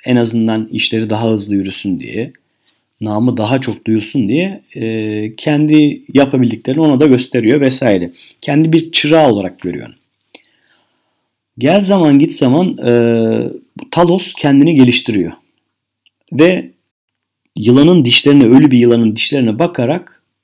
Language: Turkish